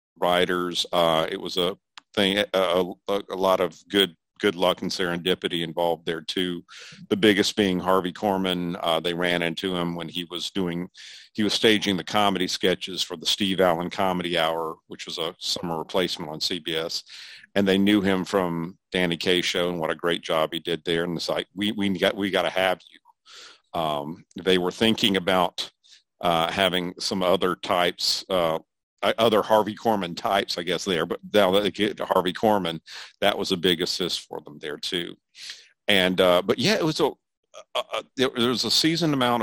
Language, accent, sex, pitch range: English, American, male, 90-105 Hz